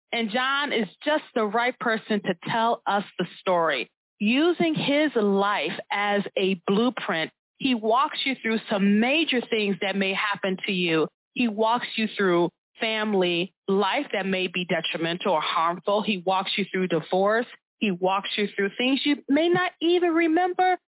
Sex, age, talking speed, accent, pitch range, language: female, 30-49, 165 wpm, American, 185-245 Hz, English